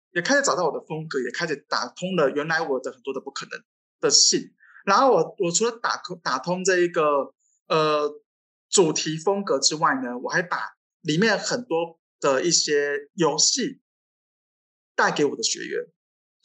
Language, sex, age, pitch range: Chinese, male, 20-39, 155-255 Hz